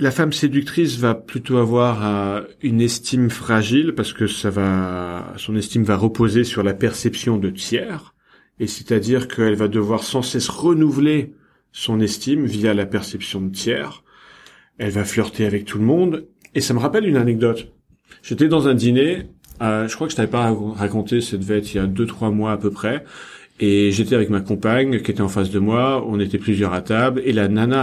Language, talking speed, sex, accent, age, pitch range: French, 200 wpm, male, French, 40-59, 105-130 Hz